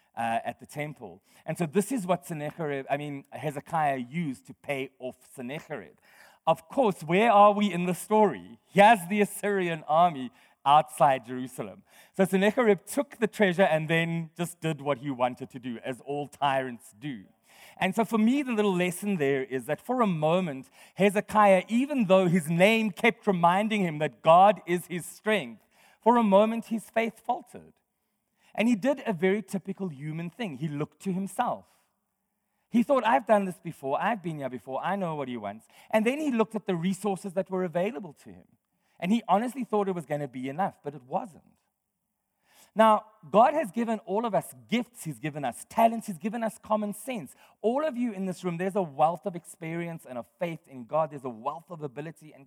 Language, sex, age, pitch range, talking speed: English, male, 40-59, 155-215 Hz, 200 wpm